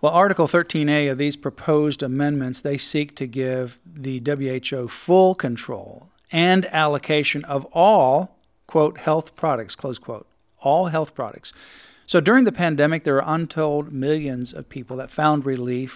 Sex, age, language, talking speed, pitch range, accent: male, 50-69, English, 150 wpm, 130-155 Hz, American